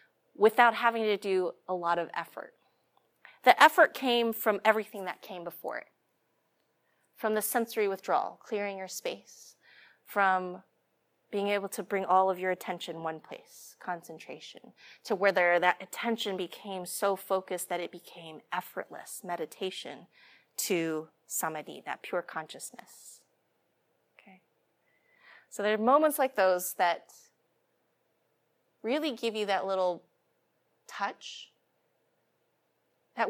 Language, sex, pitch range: English, female, 180-255 Hz